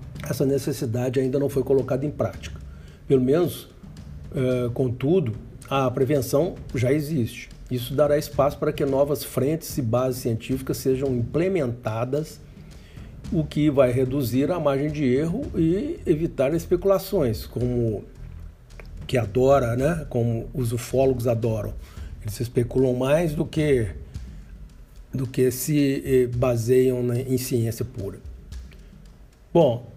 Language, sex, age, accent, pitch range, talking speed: Portuguese, male, 60-79, Brazilian, 115-140 Hz, 120 wpm